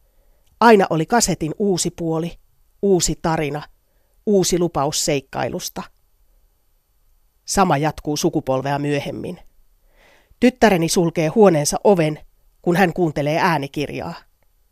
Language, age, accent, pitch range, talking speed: Finnish, 30-49, native, 150-190 Hz, 90 wpm